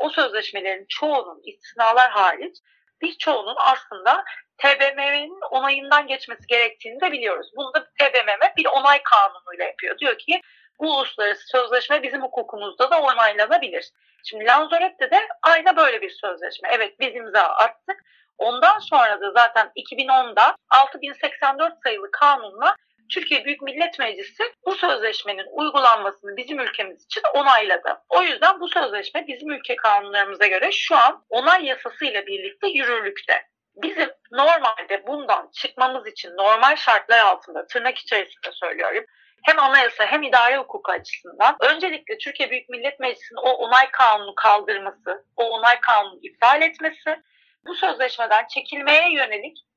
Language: Turkish